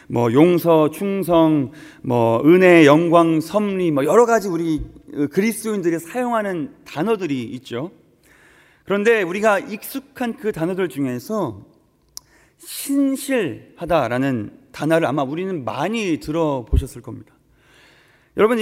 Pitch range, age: 155-235 Hz, 30-49